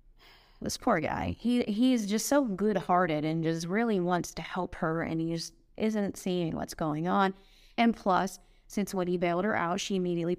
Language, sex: English, female